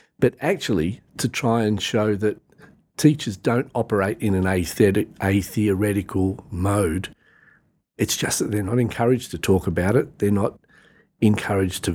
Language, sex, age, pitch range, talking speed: English, male, 50-69, 95-115 Hz, 140 wpm